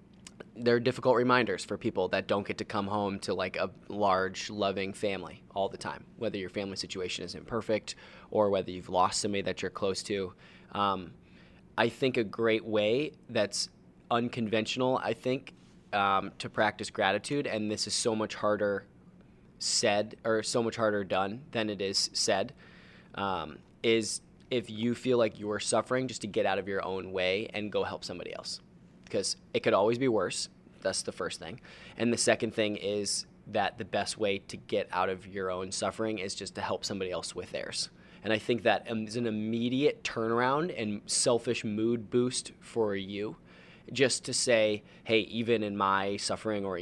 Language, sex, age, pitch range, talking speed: English, male, 20-39, 95-115 Hz, 185 wpm